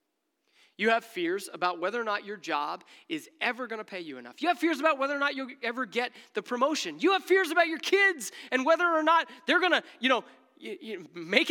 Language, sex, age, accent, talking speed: English, male, 30-49, American, 230 wpm